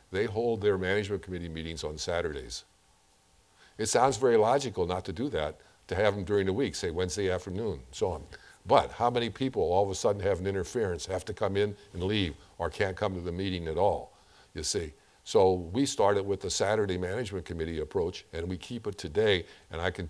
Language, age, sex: English, 50-69, male